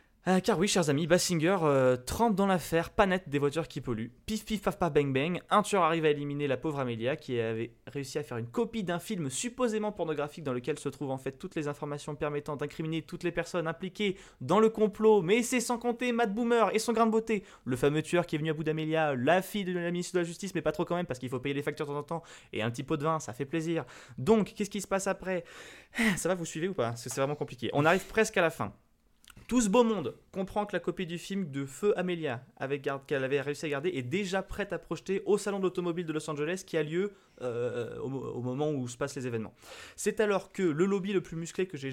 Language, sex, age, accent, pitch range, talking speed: French, male, 20-39, French, 135-185 Hz, 265 wpm